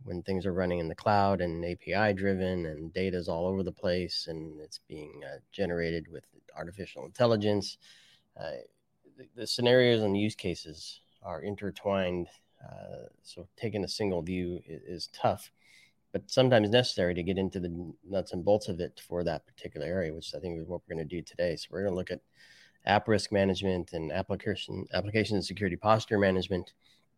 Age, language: 30-49, English